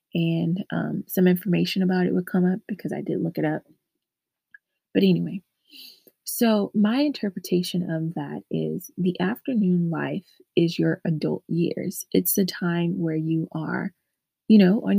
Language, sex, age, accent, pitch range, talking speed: English, female, 20-39, American, 165-195 Hz, 155 wpm